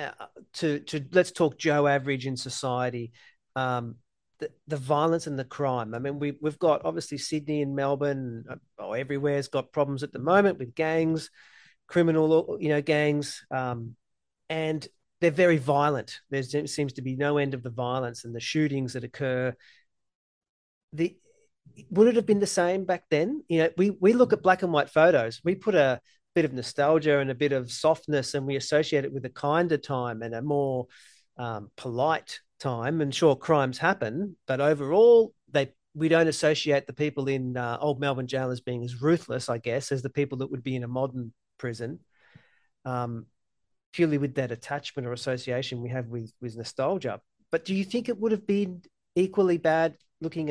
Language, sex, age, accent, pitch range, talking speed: English, male, 40-59, Australian, 130-160 Hz, 190 wpm